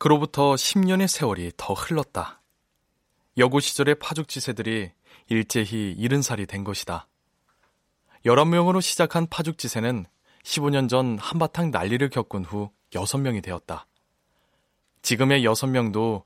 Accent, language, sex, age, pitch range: native, Korean, male, 20-39, 105-155 Hz